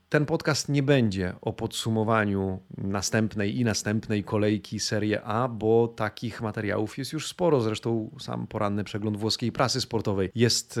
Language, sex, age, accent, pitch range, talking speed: Polish, male, 30-49, native, 105-125 Hz, 145 wpm